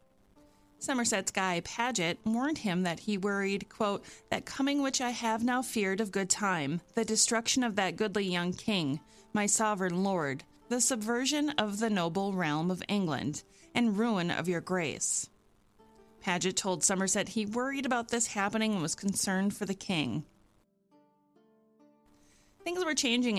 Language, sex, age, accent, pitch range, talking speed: English, female, 30-49, American, 180-235 Hz, 150 wpm